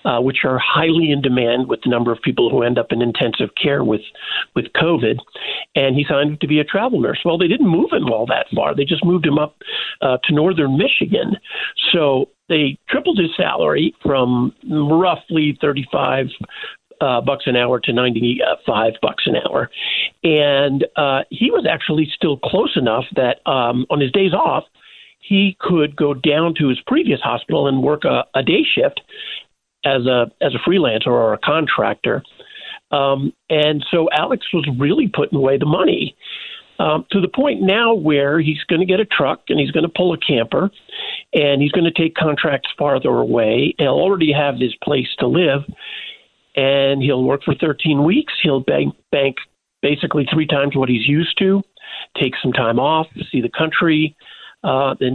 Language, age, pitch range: English, 50-69, 135-175 Hz